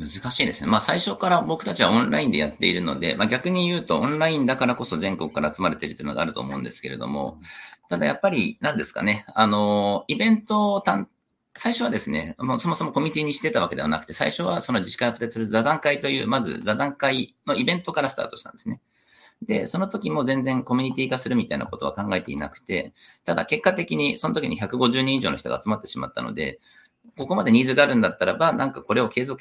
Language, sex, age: Japanese, male, 40-59